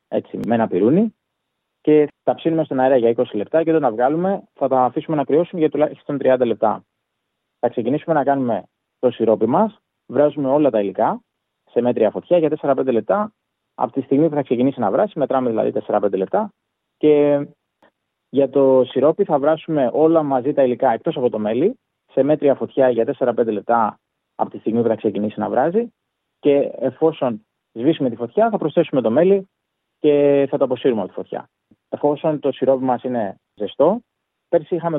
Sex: male